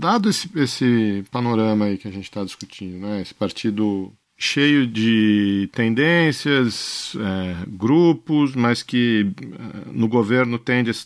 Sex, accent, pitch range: male, Brazilian, 100-125 Hz